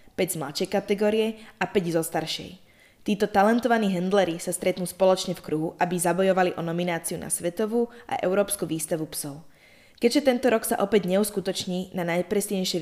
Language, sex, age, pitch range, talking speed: Slovak, female, 20-39, 170-205 Hz, 160 wpm